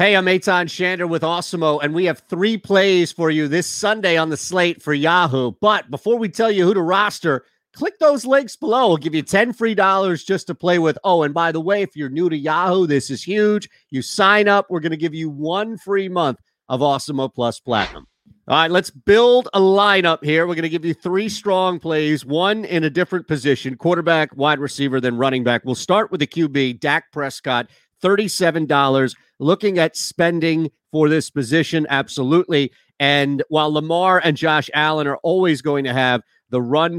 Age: 40-59